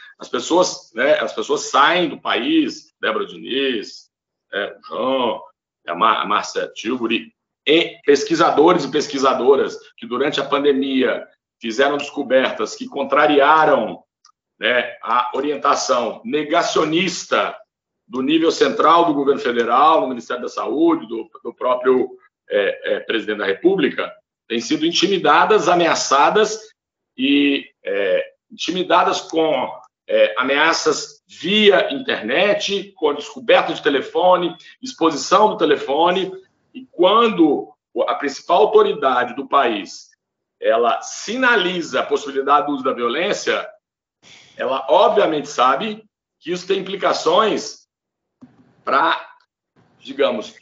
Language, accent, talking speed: Portuguese, Brazilian, 105 wpm